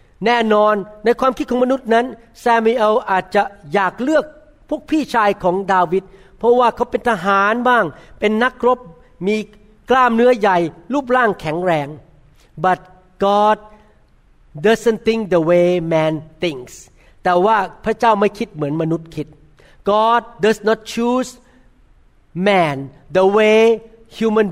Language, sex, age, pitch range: Thai, male, 60-79, 180-235 Hz